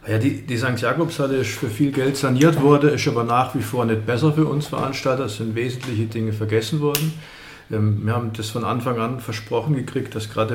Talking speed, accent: 210 wpm, German